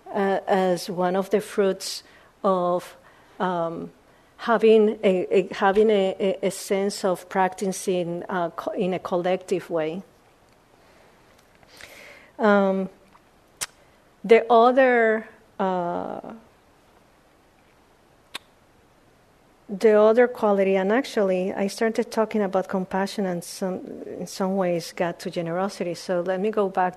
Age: 50-69